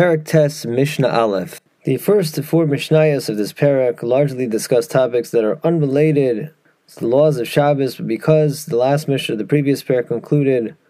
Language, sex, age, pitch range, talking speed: English, male, 20-39, 115-155 Hz, 165 wpm